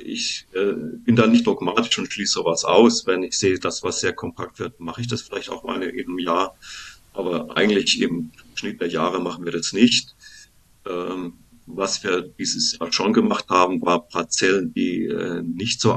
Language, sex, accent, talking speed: German, male, German, 190 wpm